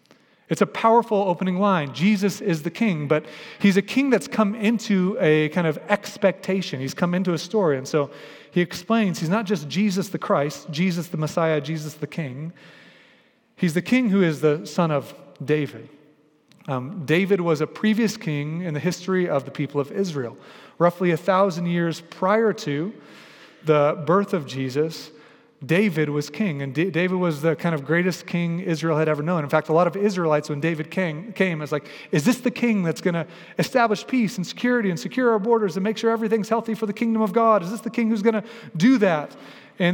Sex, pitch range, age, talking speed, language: male, 155-205 Hz, 30-49, 205 wpm, English